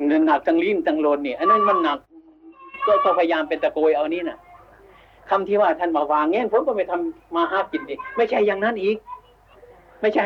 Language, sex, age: Thai, male, 60-79